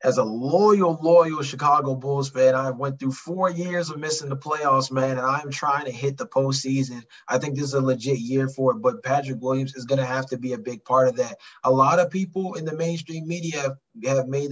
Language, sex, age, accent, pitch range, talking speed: English, male, 20-39, American, 135-170 Hz, 230 wpm